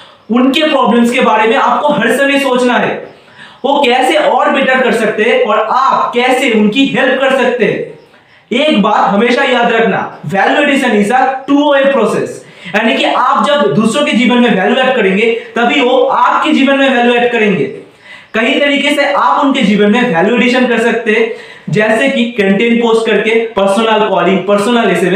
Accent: native